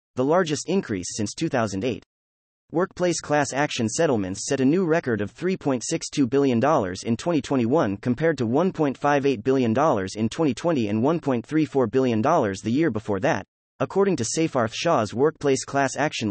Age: 30-49